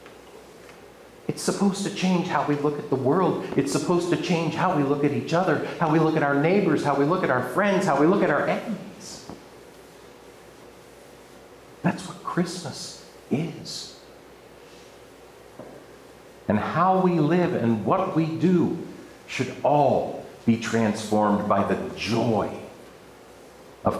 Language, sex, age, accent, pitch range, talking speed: English, male, 50-69, American, 110-175 Hz, 145 wpm